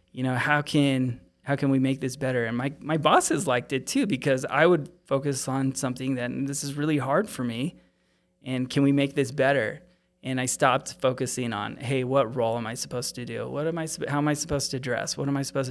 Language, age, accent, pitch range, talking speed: English, 20-39, American, 120-140 Hz, 235 wpm